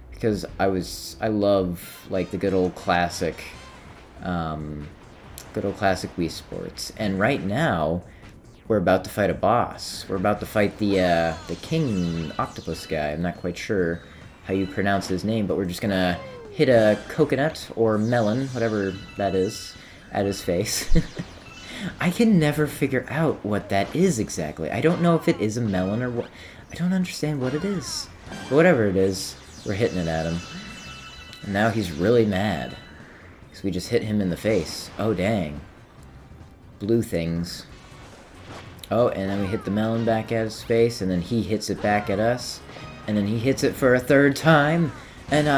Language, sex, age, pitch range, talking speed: English, male, 30-49, 90-120 Hz, 185 wpm